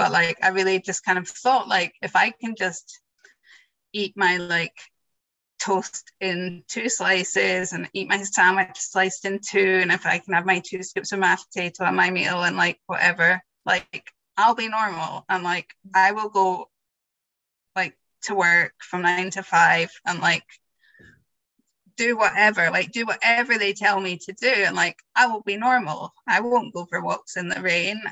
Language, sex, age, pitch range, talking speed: English, female, 20-39, 180-215 Hz, 185 wpm